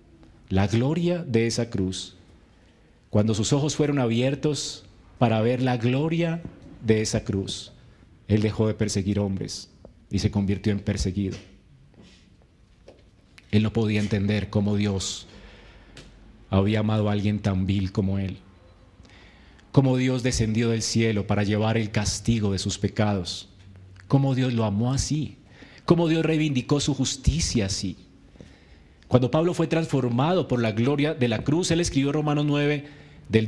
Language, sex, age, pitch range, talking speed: Spanish, male, 40-59, 100-165 Hz, 140 wpm